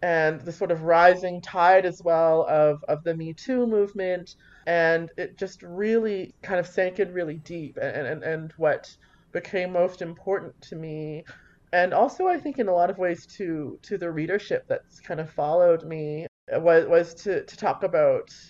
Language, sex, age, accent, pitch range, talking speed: English, male, 30-49, American, 155-185 Hz, 185 wpm